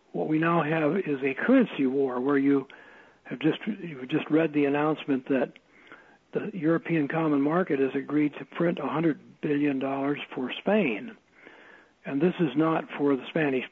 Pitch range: 135-155 Hz